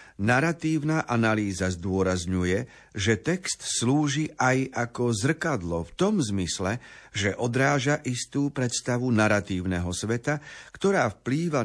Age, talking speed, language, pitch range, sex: 50-69, 105 wpm, Slovak, 100-135 Hz, male